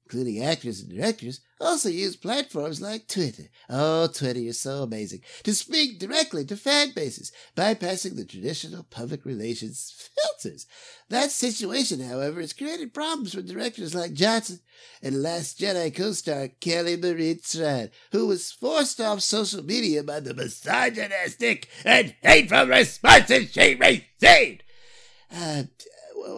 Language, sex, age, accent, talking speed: English, male, 60-79, American, 135 wpm